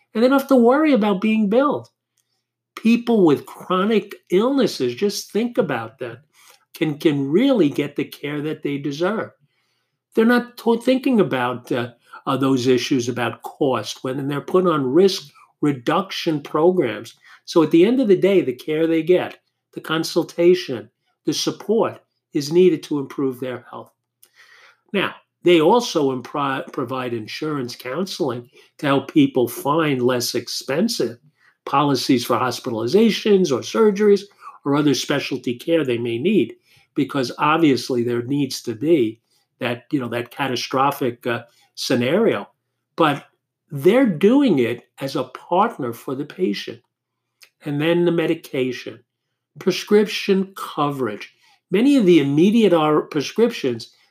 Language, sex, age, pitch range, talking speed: English, male, 50-69, 130-200 Hz, 135 wpm